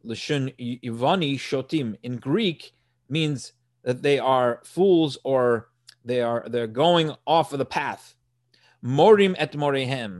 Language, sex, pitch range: English, male, 125-165 Hz